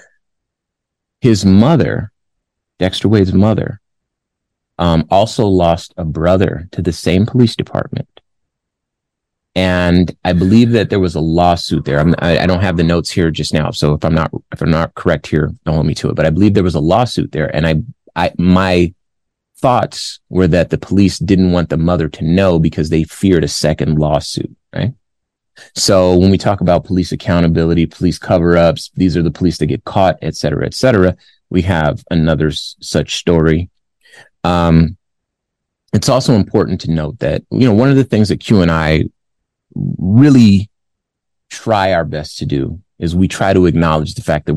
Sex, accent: male, American